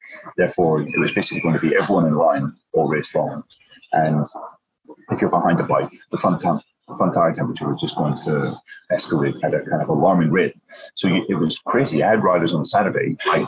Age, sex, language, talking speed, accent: 30-49, male, English, 200 wpm, British